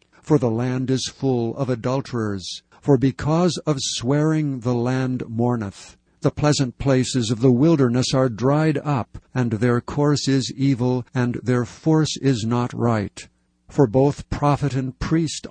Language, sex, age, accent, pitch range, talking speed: English, male, 60-79, American, 115-145 Hz, 150 wpm